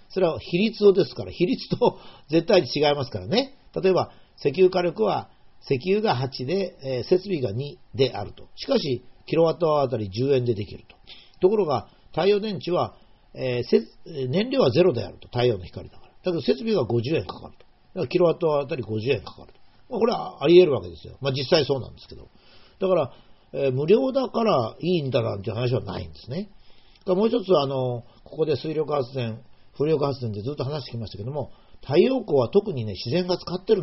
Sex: male